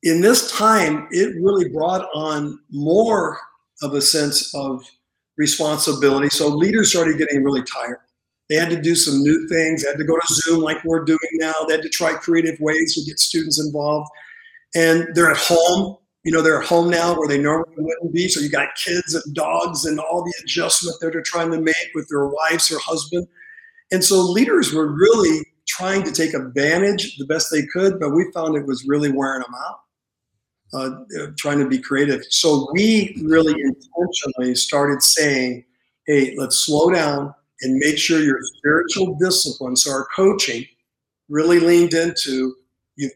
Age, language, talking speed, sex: 50-69, English, 180 wpm, male